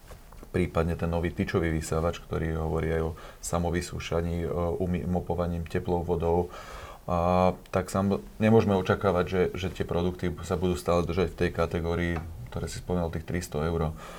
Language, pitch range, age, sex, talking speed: Slovak, 85-95 Hz, 30-49, male, 150 wpm